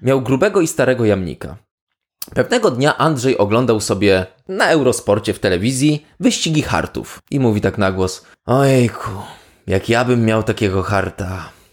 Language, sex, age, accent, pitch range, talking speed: Polish, male, 20-39, native, 95-135 Hz, 145 wpm